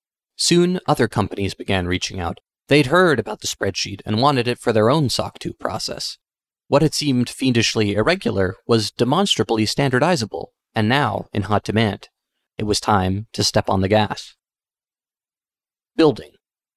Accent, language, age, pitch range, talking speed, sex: American, English, 30-49, 105-130 Hz, 150 wpm, male